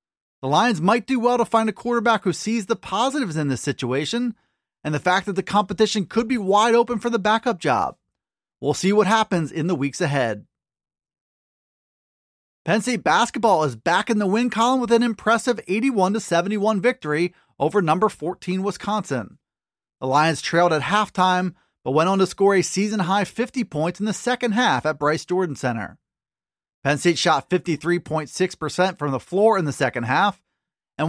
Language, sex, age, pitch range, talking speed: English, male, 30-49, 160-220 Hz, 175 wpm